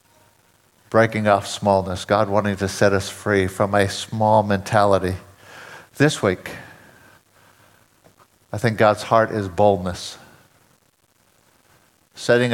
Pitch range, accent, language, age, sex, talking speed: 100-115 Hz, American, English, 50-69, male, 105 wpm